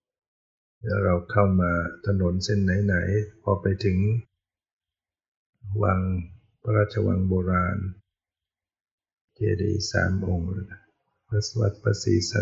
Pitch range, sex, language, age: 95-105 Hz, male, Thai, 60-79